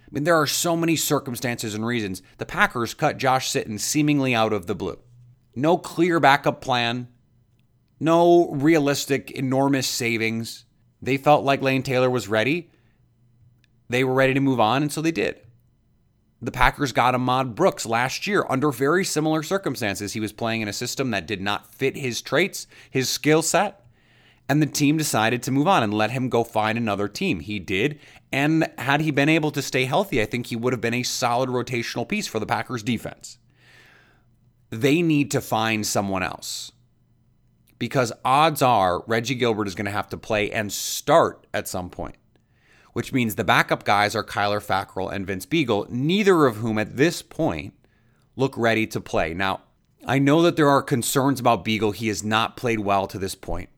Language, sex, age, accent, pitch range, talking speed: English, male, 30-49, American, 110-140 Hz, 185 wpm